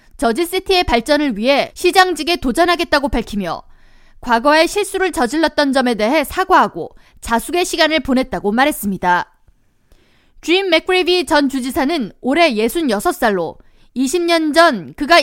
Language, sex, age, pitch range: Korean, female, 20-39, 255-345 Hz